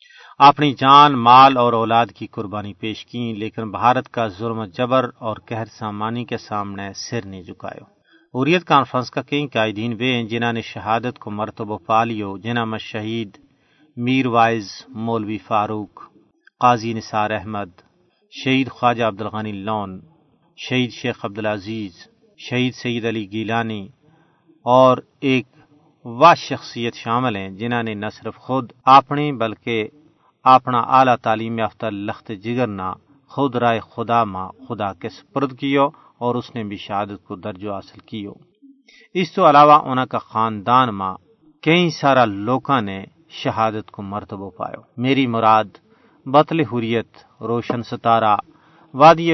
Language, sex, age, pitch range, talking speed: Urdu, male, 40-59, 110-130 Hz, 140 wpm